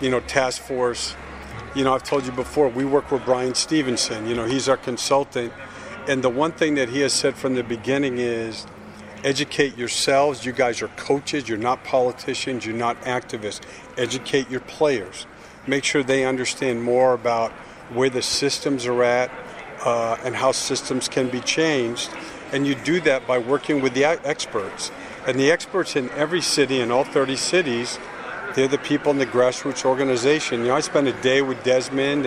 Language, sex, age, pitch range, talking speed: English, male, 50-69, 120-140 Hz, 185 wpm